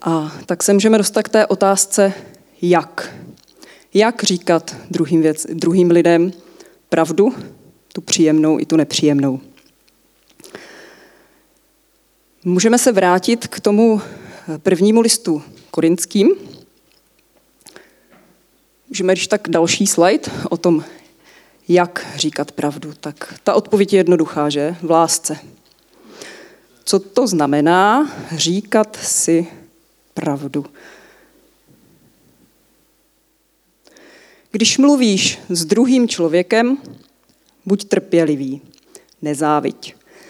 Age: 20-39